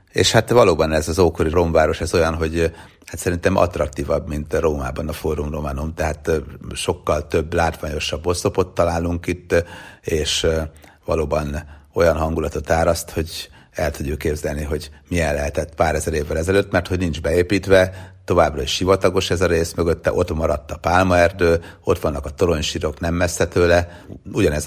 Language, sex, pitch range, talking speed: Hungarian, male, 75-90 Hz, 155 wpm